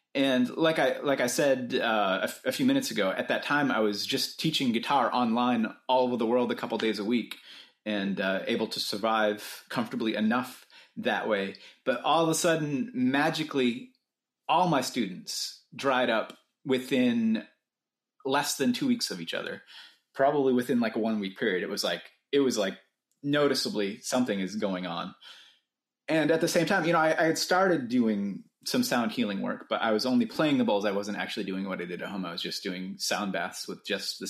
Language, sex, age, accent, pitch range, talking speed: English, male, 30-49, American, 105-165 Hz, 205 wpm